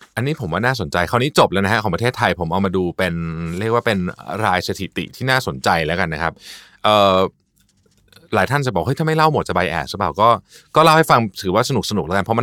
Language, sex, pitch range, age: Thai, male, 85-120 Hz, 30-49